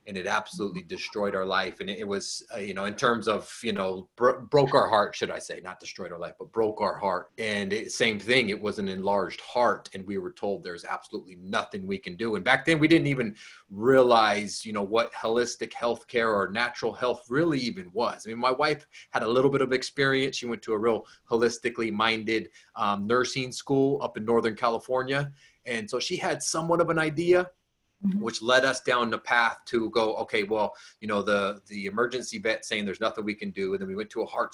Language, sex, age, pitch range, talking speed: English, male, 30-49, 105-155 Hz, 225 wpm